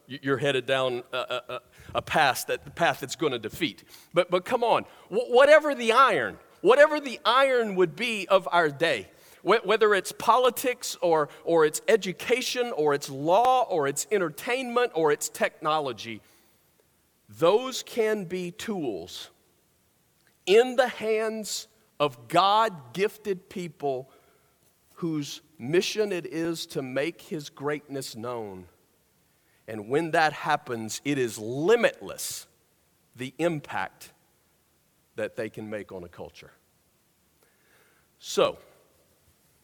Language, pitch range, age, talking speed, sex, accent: English, 135-215 Hz, 50-69, 125 wpm, male, American